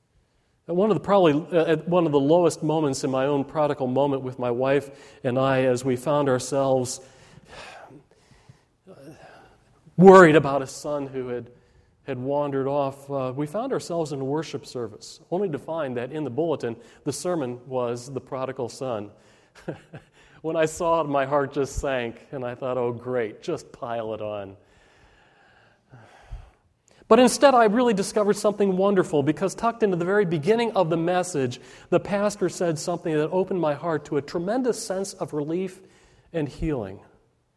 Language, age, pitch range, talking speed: English, 40-59, 135-190 Hz, 165 wpm